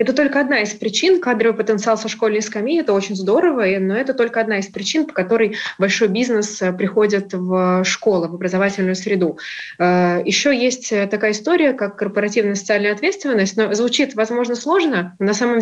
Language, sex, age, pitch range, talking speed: Russian, female, 20-39, 190-230 Hz, 165 wpm